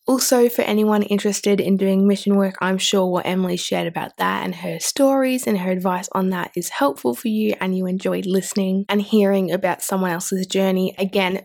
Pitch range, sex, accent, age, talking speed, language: 195-230 Hz, female, Australian, 20-39, 200 wpm, English